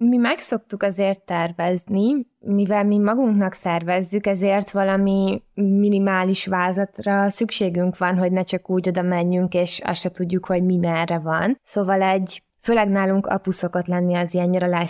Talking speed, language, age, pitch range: 145 wpm, Hungarian, 20-39, 180-205 Hz